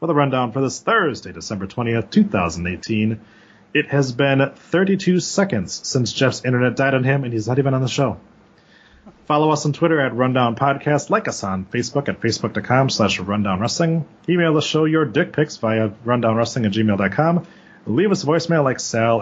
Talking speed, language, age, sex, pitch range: 185 wpm, English, 30-49, male, 110-155 Hz